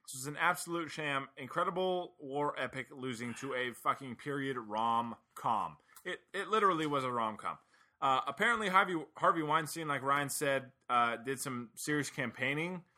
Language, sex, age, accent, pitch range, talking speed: English, male, 20-39, American, 125-165 Hz, 150 wpm